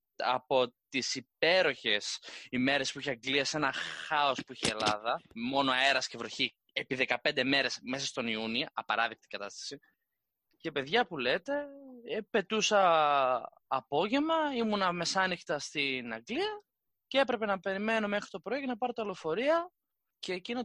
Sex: male